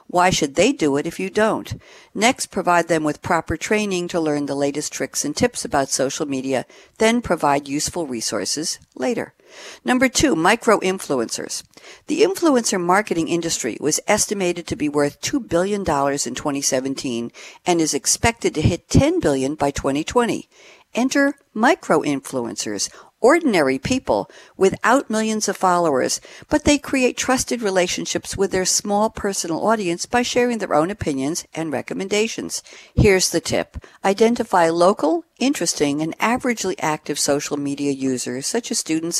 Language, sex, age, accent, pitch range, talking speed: English, female, 60-79, American, 145-220 Hz, 145 wpm